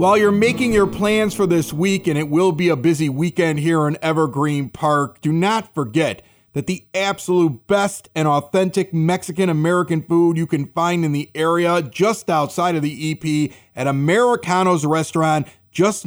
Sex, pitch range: male, 155-195 Hz